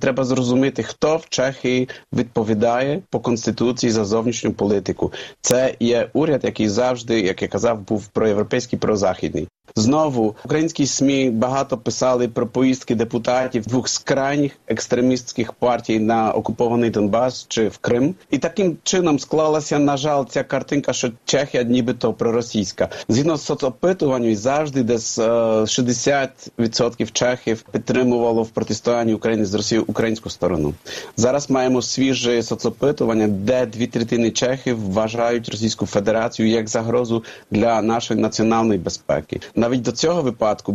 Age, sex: 40-59, male